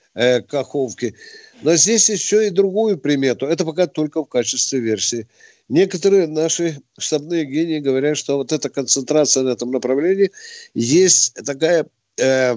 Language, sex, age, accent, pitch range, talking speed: Russian, male, 50-69, native, 135-175 Hz, 135 wpm